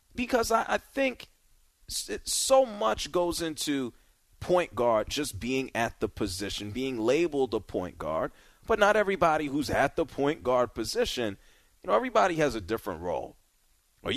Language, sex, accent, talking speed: English, male, American, 155 wpm